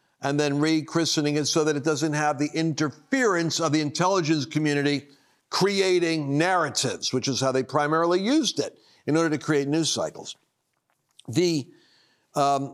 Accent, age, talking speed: American, 50-69, 150 wpm